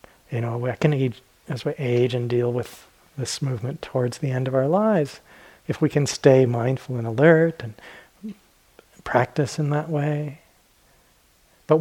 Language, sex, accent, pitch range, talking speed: English, male, American, 120-150 Hz, 165 wpm